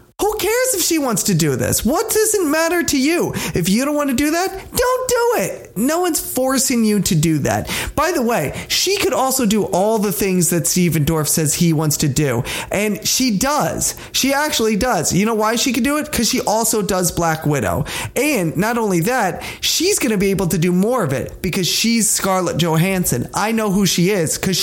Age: 30-49